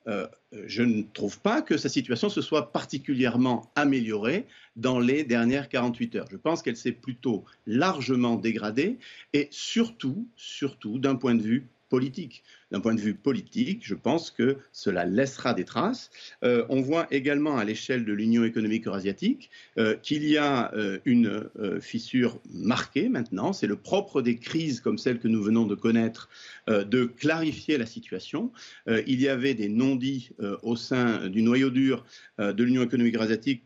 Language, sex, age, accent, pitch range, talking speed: French, male, 50-69, French, 115-150 Hz, 175 wpm